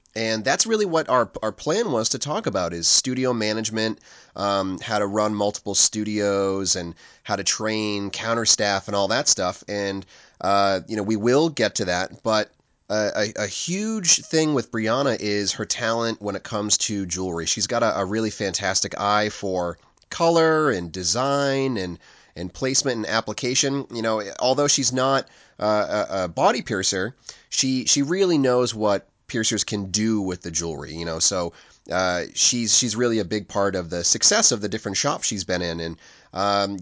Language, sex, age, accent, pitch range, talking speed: English, male, 30-49, American, 100-125 Hz, 185 wpm